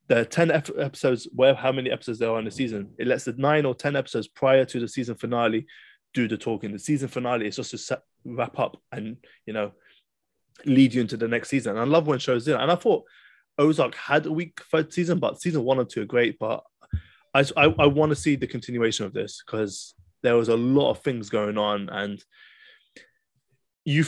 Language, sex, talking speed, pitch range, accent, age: English, male, 220 wpm, 120-150 Hz, British, 20-39